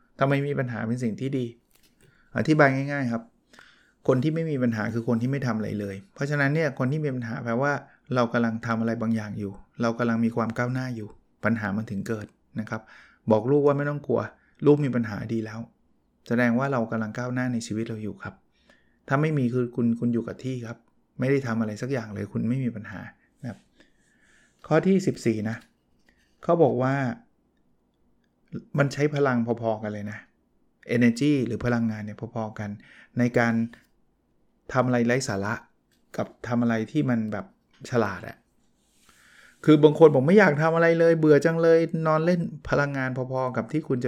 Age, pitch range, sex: 20-39, 115-140 Hz, male